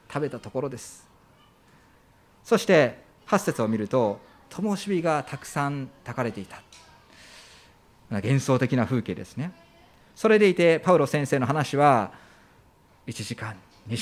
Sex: male